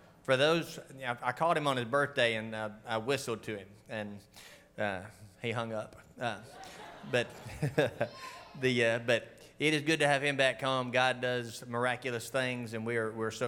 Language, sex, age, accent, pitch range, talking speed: English, male, 30-49, American, 110-130 Hz, 180 wpm